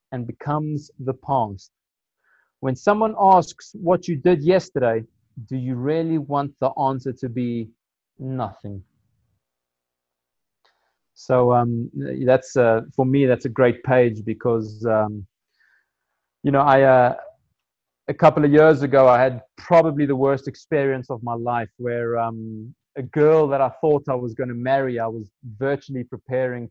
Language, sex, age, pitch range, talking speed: English, male, 30-49, 115-135 Hz, 150 wpm